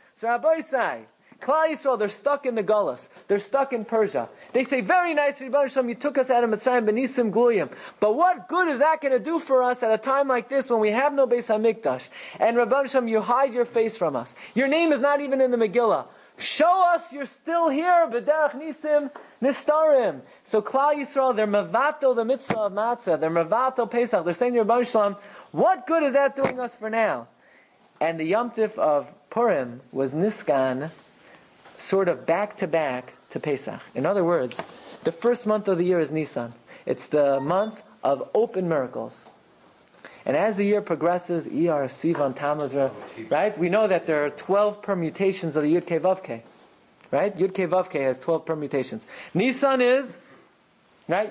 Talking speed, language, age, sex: 175 wpm, English, 30-49, male